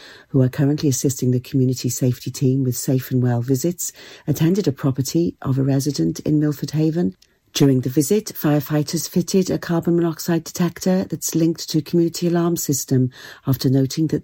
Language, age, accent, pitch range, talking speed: English, 40-59, British, 135-175 Hz, 175 wpm